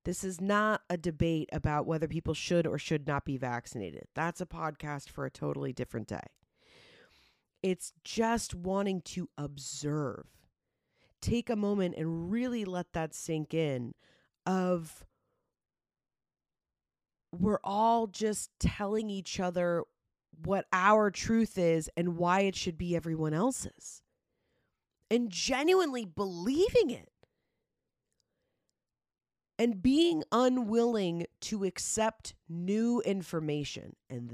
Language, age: English, 30-49